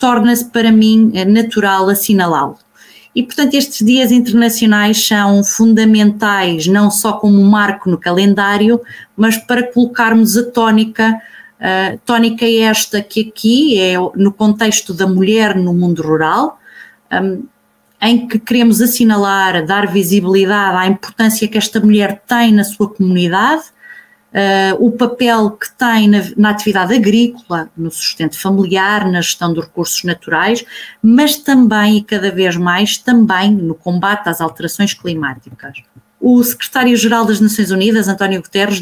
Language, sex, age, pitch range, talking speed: Portuguese, female, 20-39, 190-225 Hz, 130 wpm